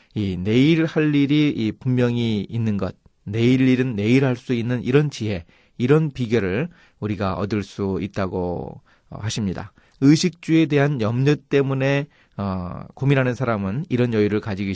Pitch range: 105-145 Hz